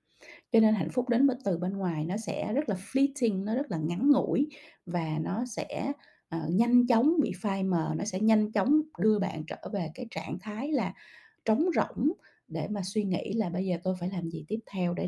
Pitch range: 175-240 Hz